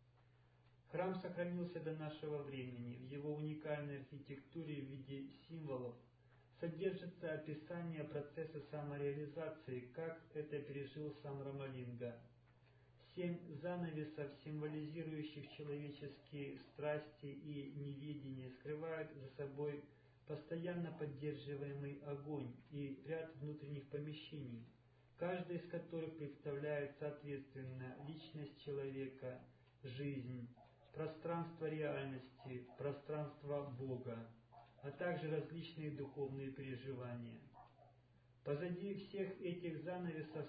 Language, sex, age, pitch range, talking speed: Russian, male, 40-59, 130-150 Hz, 85 wpm